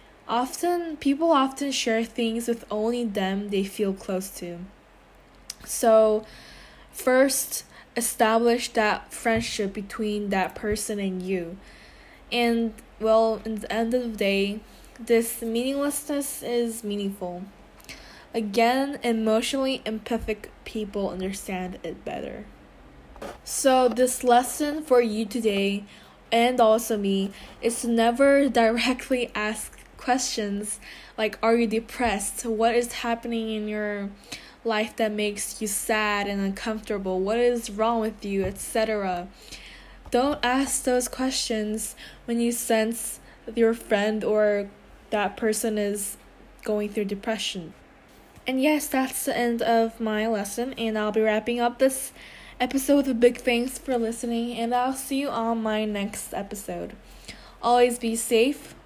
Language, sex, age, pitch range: Korean, female, 10-29, 210-240 Hz